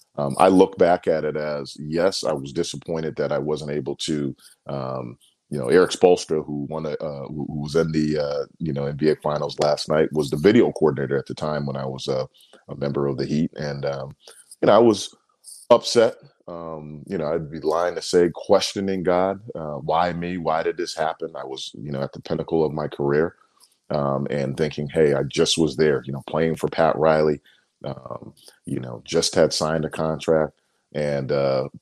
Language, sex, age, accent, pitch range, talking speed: English, male, 40-59, American, 70-80 Hz, 205 wpm